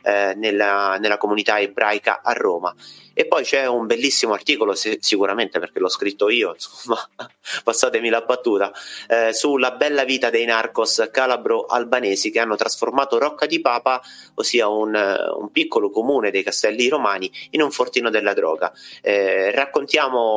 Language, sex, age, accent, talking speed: Italian, male, 30-49, native, 155 wpm